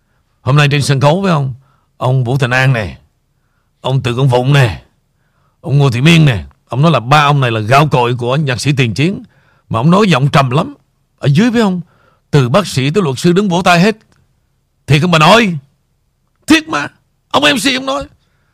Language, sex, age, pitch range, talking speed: Vietnamese, male, 60-79, 135-210 Hz, 215 wpm